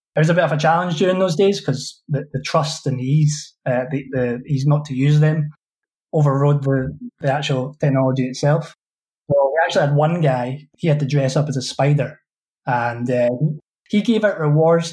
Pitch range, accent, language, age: 135-160 Hz, British, English, 20-39